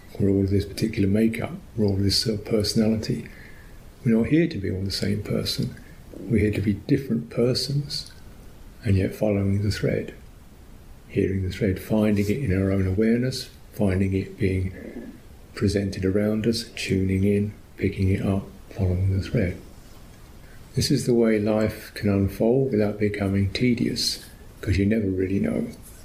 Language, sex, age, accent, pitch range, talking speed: English, male, 50-69, British, 95-115 Hz, 165 wpm